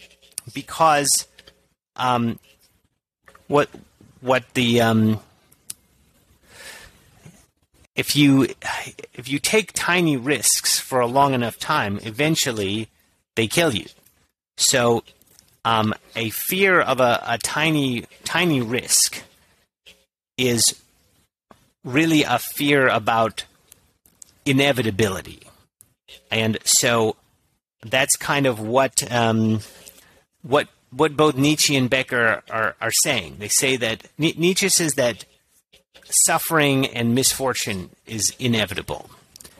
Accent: American